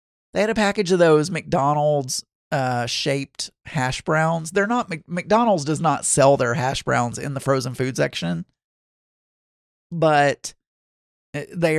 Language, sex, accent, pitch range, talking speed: English, male, American, 130-185 Hz, 145 wpm